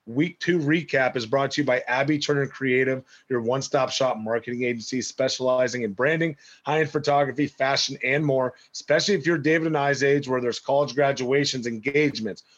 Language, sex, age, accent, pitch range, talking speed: English, male, 30-49, American, 125-160 Hz, 170 wpm